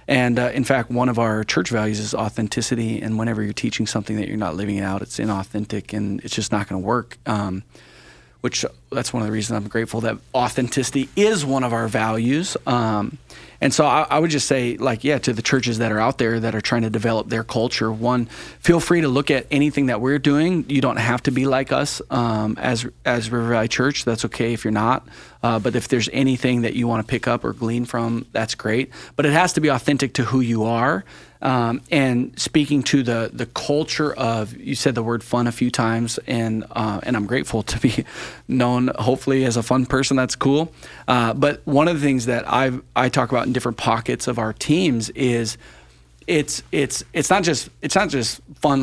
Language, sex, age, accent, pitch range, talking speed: English, male, 30-49, American, 115-135 Hz, 225 wpm